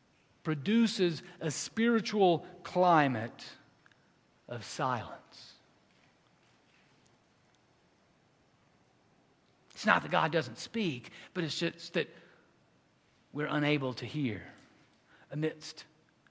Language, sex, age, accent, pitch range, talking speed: English, male, 50-69, American, 160-240 Hz, 75 wpm